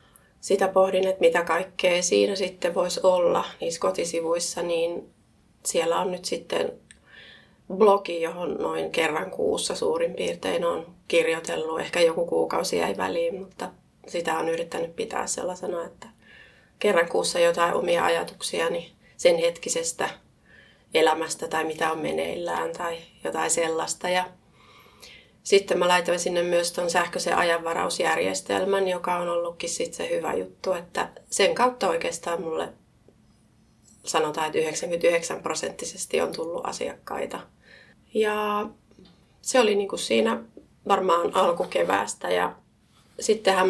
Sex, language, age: female, Finnish, 30-49